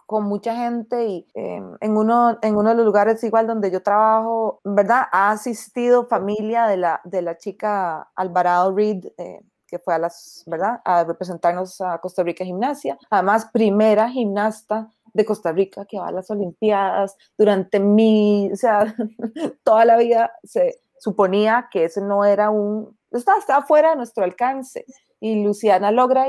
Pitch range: 210-260 Hz